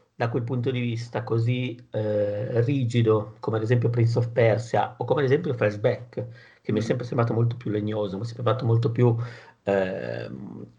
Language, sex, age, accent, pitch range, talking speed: Italian, male, 50-69, native, 110-125 Hz, 190 wpm